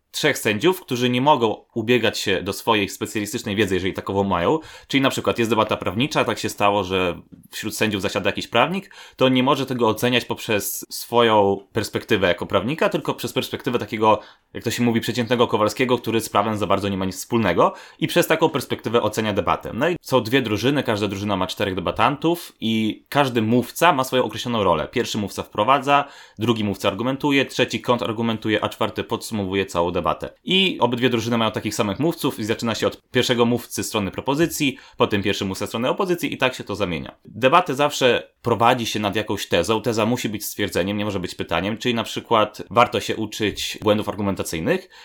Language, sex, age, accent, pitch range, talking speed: Polish, male, 20-39, native, 100-125 Hz, 195 wpm